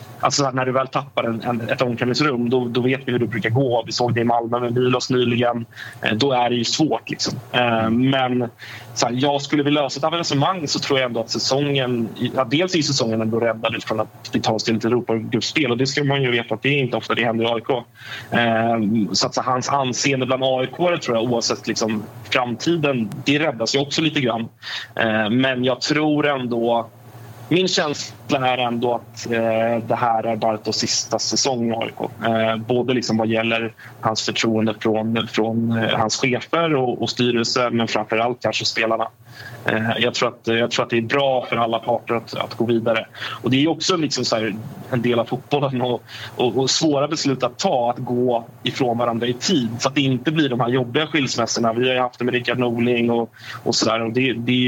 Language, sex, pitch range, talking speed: Swedish, male, 115-130 Hz, 215 wpm